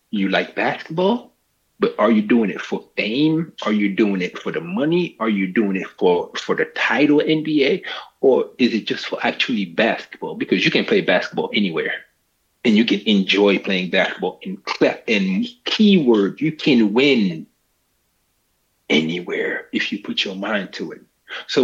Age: 30-49